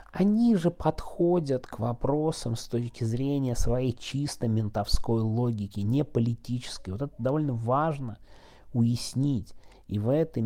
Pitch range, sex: 100-130 Hz, male